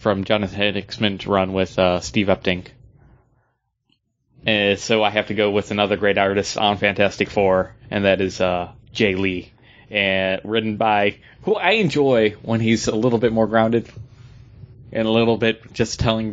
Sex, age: male, 20-39